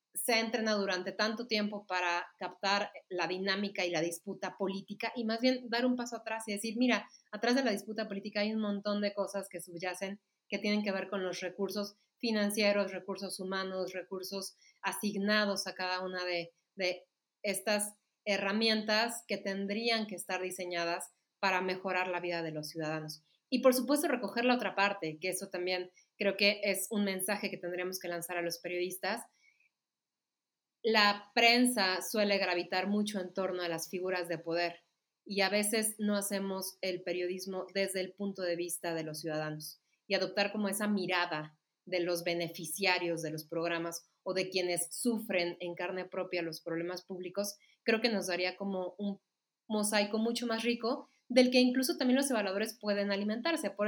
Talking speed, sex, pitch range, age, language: 175 wpm, female, 180-210 Hz, 30-49, Spanish